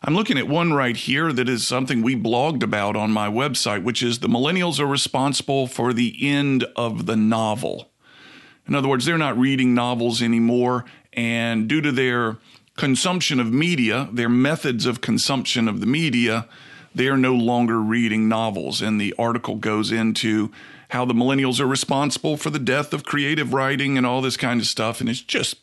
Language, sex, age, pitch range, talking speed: English, male, 40-59, 115-145 Hz, 185 wpm